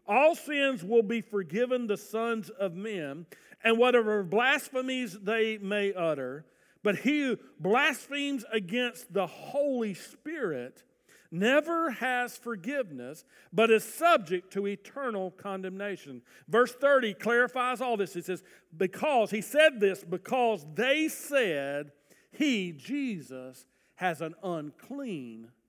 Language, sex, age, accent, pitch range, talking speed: English, male, 50-69, American, 200-275 Hz, 120 wpm